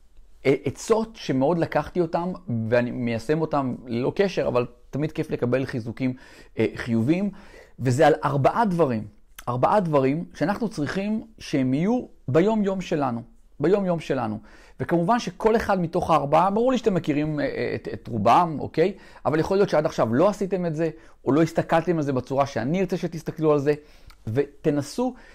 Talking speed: 150 wpm